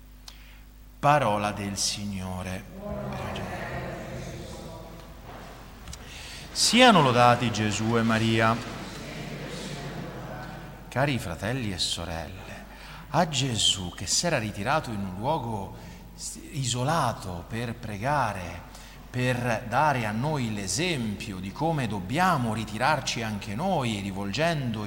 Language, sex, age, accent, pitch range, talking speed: Italian, male, 40-59, native, 110-165 Hz, 85 wpm